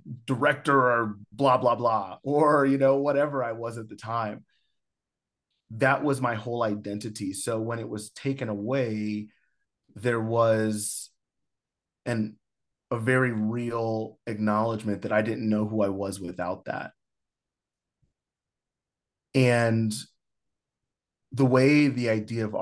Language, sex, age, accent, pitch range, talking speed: English, male, 30-49, American, 105-125 Hz, 125 wpm